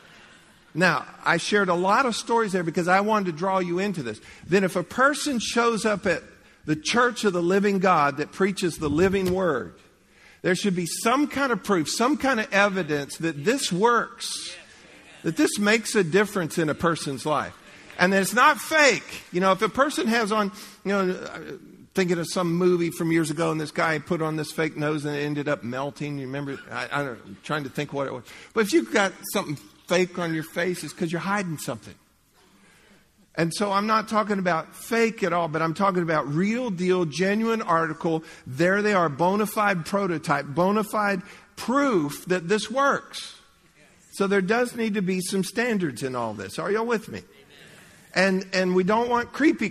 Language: English